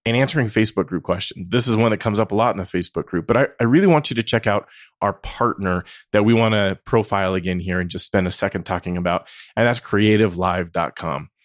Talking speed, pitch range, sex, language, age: 235 wpm, 95-115 Hz, male, English, 30-49